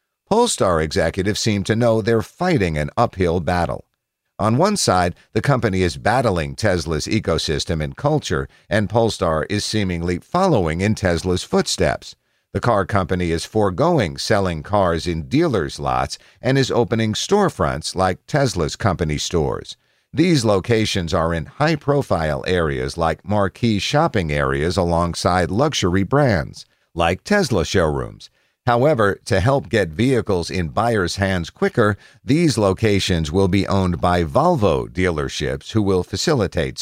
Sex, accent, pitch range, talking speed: male, American, 85-120 Hz, 135 wpm